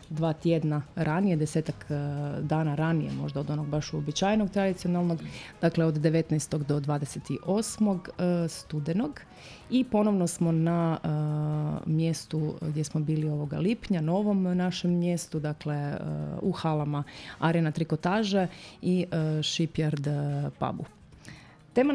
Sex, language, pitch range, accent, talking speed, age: female, Croatian, 155-175 Hz, native, 125 wpm, 30-49